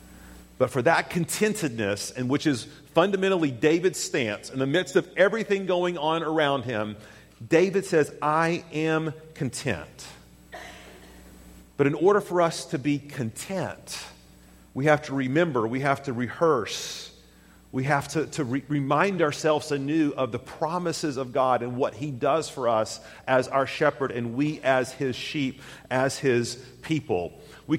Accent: American